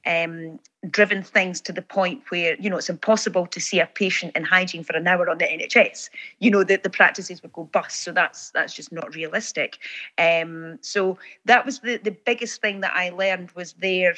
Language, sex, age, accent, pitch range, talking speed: English, female, 30-49, British, 170-205 Hz, 210 wpm